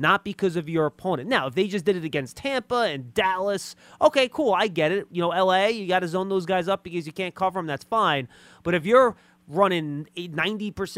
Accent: American